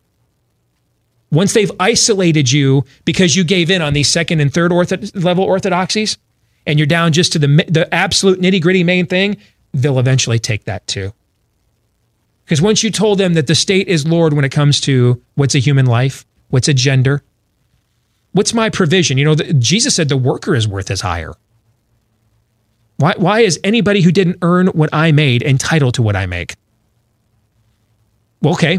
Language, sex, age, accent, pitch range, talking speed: English, male, 30-49, American, 115-180 Hz, 170 wpm